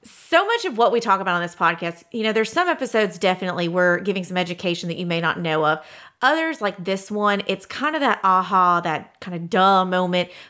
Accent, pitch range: American, 180-225 Hz